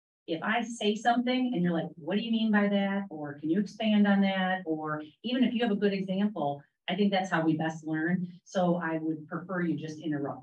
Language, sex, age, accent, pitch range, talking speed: English, female, 40-59, American, 155-195 Hz, 235 wpm